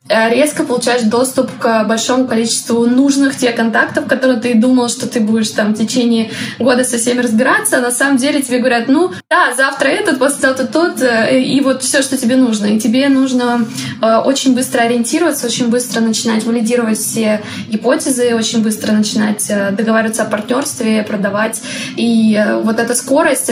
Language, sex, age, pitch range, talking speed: Russian, female, 20-39, 225-255 Hz, 165 wpm